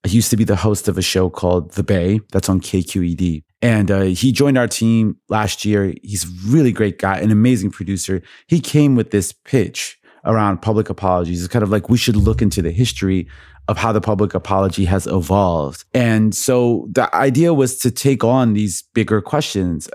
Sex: male